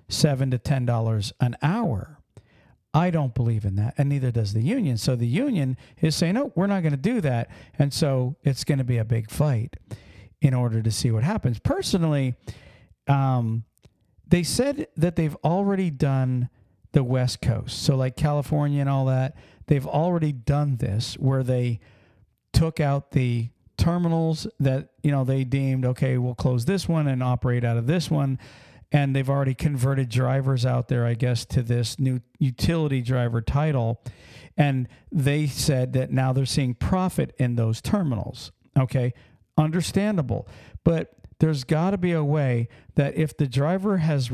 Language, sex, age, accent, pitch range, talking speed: English, male, 50-69, American, 120-150 Hz, 170 wpm